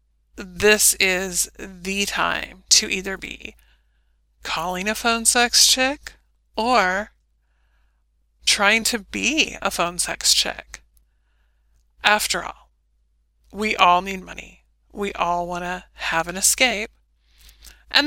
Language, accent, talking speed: English, American, 115 wpm